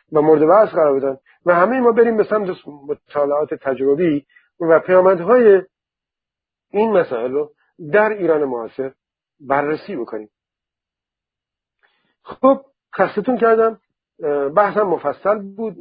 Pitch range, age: 135-190 Hz, 50-69